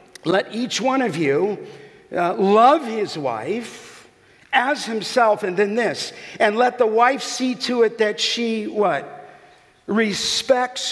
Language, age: English, 50-69